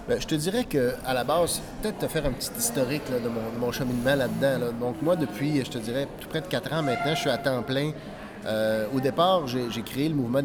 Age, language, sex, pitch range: 30-49, French, male, 125-165 Hz